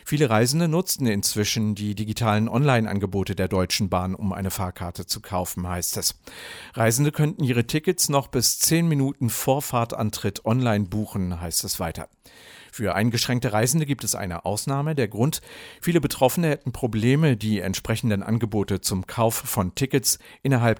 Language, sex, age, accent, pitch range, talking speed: English, male, 50-69, German, 105-130 Hz, 155 wpm